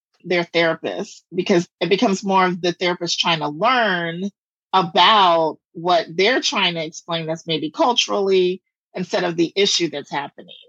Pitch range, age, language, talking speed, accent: 170-215 Hz, 30-49, English, 150 wpm, American